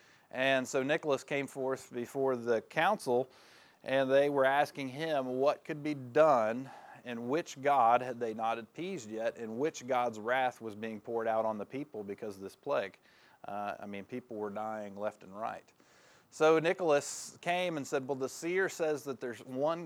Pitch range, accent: 115-145 Hz, American